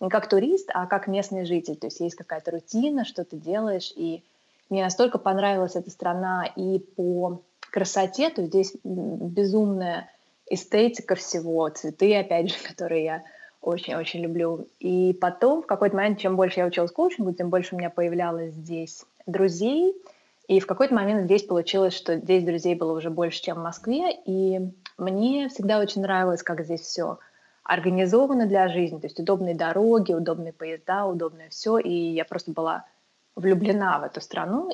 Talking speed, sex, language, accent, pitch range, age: 165 wpm, female, Russian, native, 170-205 Hz, 20-39